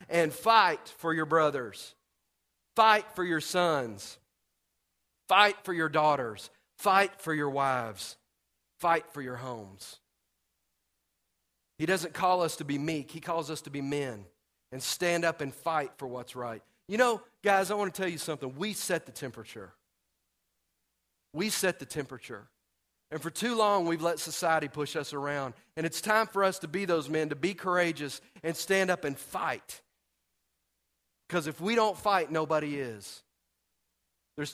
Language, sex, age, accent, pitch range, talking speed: English, male, 40-59, American, 105-175 Hz, 165 wpm